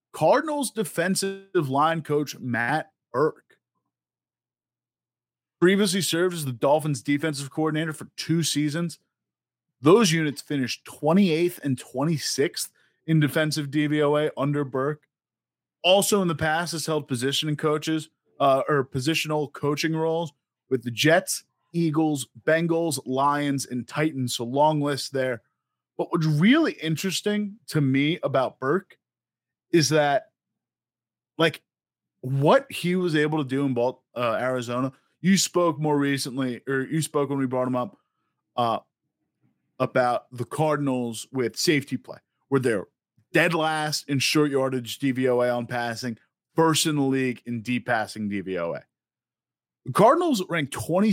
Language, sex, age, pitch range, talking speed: English, male, 30-49, 130-160 Hz, 135 wpm